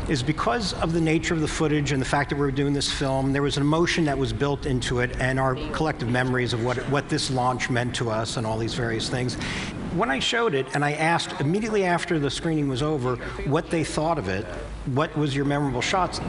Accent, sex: American, male